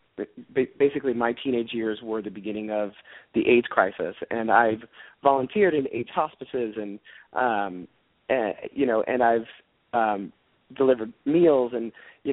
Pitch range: 110-130 Hz